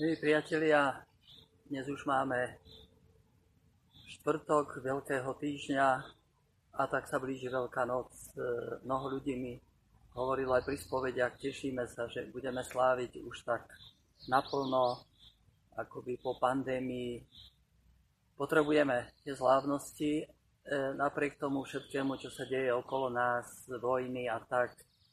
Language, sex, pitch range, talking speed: Slovak, male, 125-140 Hz, 110 wpm